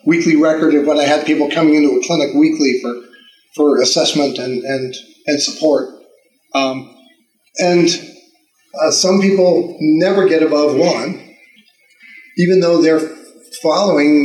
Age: 40-59